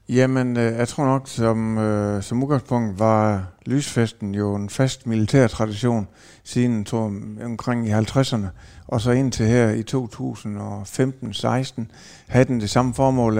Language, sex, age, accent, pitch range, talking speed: Danish, male, 60-79, native, 110-125 Hz, 130 wpm